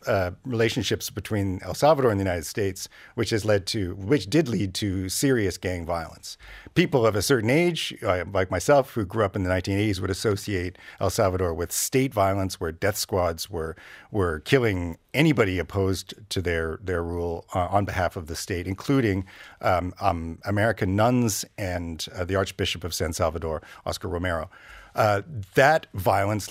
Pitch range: 90-120 Hz